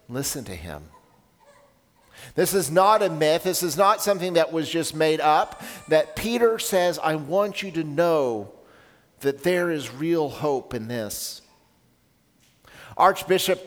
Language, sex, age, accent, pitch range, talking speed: English, male, 50-69, American, 140-175 Hz, 145 wpm